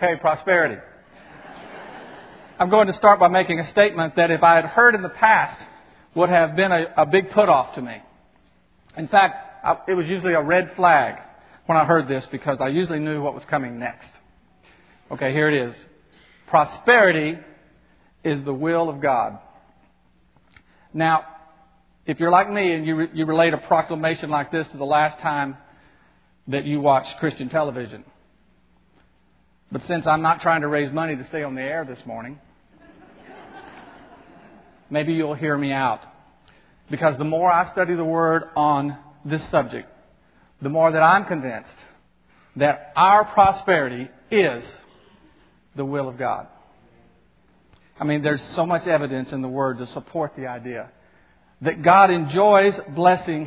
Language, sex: English, male